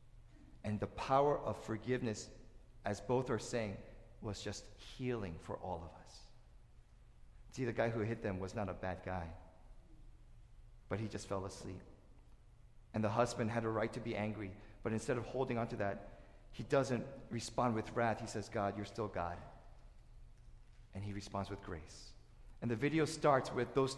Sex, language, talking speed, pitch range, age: male, English, 175 wpm, 105-125 Hz, 40-59